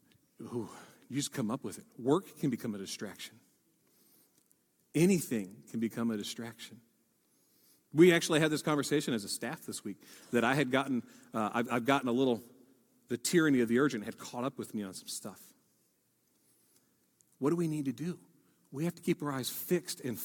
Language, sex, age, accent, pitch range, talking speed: English, male, 40-59, American, 170-285 Hz, 185 wpm